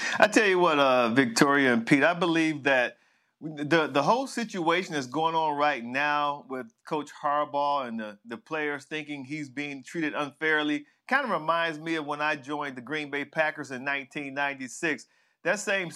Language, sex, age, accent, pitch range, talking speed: English, male, 40-59, American, 150-190 Hz, 180 wpm